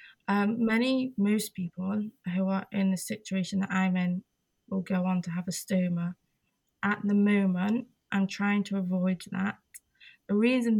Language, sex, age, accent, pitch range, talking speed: English, female, 20-39, British, 190-205 Hz, 160 wpm